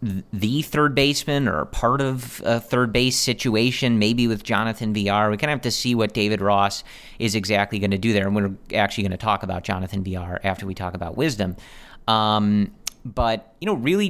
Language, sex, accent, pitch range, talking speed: English, male, American, 100-120 Hz, 205 wpm